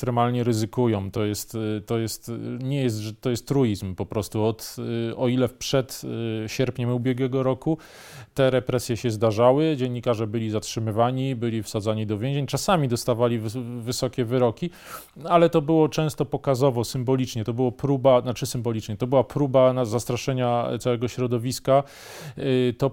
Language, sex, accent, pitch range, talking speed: Polish, male, native, 115-130 Hz, 145 wpm